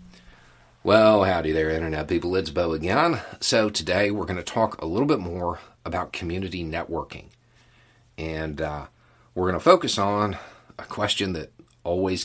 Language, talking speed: English, 155 wpm